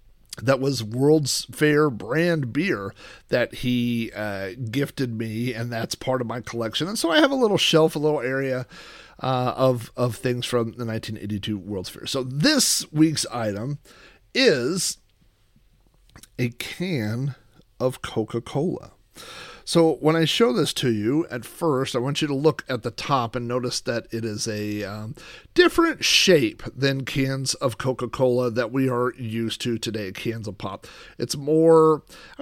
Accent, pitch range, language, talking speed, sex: American, 115-160 Hz, English, 160 wpm, male